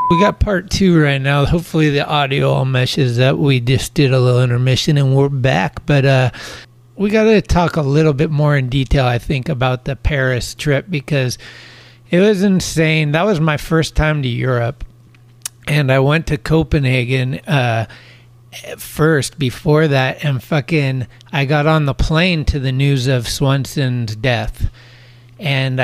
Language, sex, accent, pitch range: English, male, American, 120-155 Hz